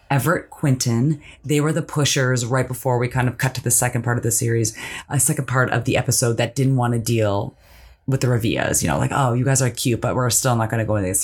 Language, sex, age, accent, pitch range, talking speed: English, female, 30-49, American, 115-145 Hz, 265 wpm